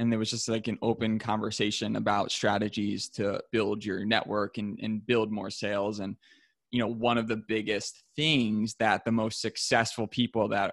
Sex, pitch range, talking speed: male, 110-125 Hz, 185 wpm